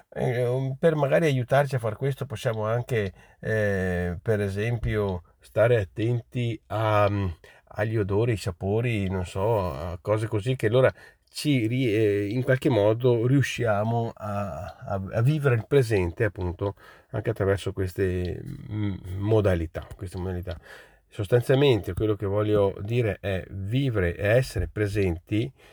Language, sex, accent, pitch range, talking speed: Italian, male, native, 95-125 Hz, 125 wpm